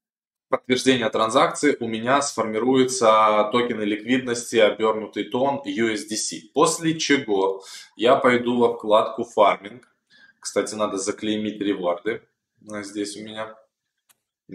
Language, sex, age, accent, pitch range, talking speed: Russian, male, 20-39, native, 100-160 Hz, 105 wpm